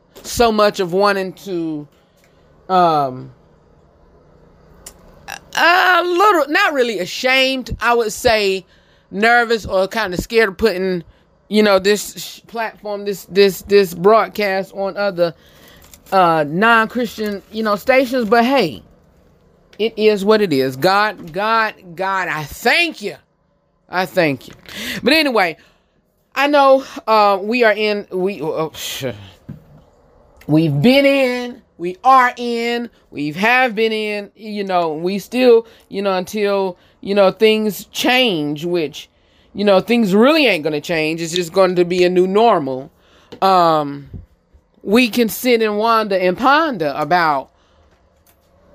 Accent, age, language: American, 30-49, English